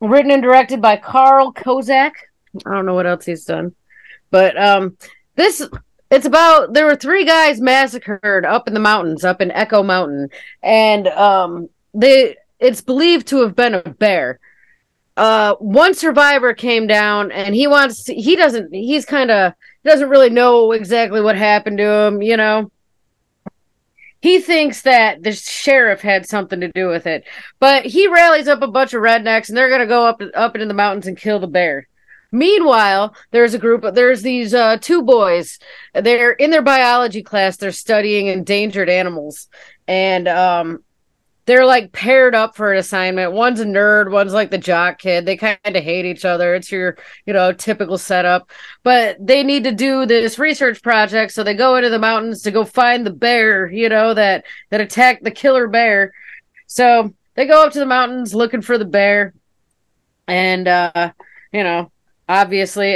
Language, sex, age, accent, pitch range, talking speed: English, female, 30-49, American, 195-255 Hz, 180 wpm